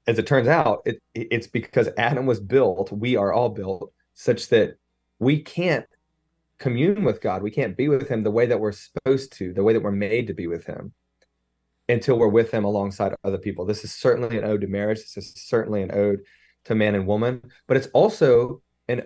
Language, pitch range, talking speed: English, 100-125 Hz, 210 wpm